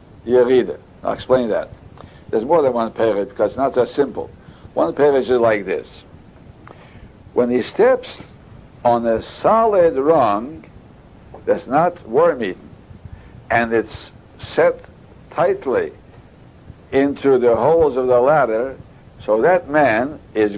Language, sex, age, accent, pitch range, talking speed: English, male, 60-79, American, 115-170 Hz, 135 wpm